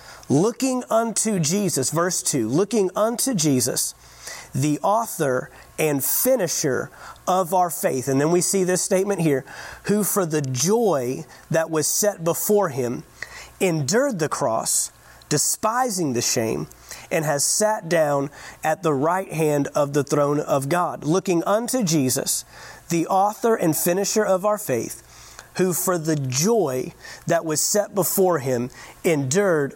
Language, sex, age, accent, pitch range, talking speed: English, male, 40-59, American, 150-195 Hz, 140 wpm